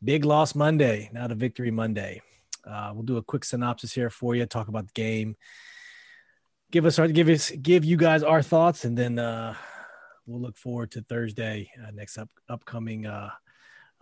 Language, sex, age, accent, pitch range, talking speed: English, male, 30-49, American, 115-145 Hz, 185 wpm